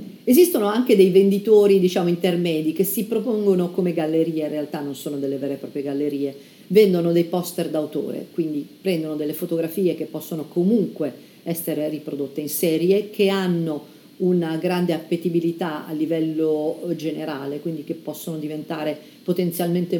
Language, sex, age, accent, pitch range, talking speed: Italian, female, 50-69, native, 155-190 Hz, 140 wpm